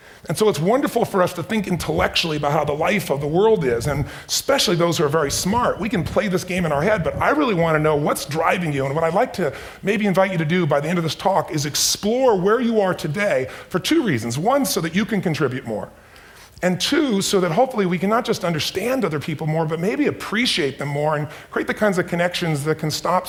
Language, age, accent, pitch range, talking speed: Italian, 40-59, American, 150-190 Hz, 260 wpm